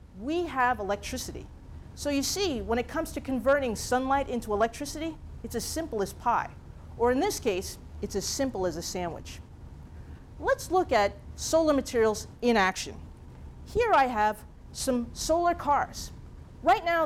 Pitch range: 215-300 Hz